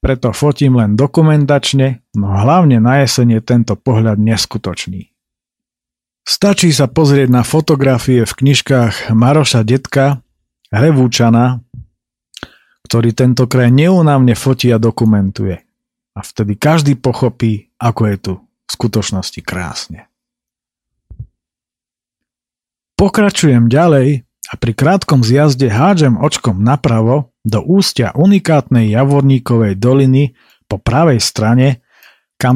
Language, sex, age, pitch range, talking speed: Slovak, male, 40-59, 115-140 Hz, 100 wpm